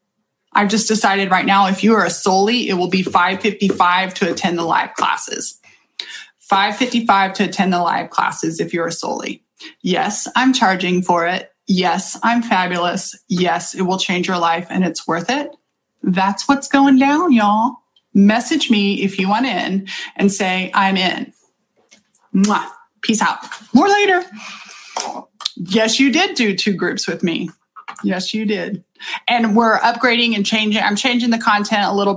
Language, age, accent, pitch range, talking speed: English, 20-39, American, 185-220 Hz, 165 wpm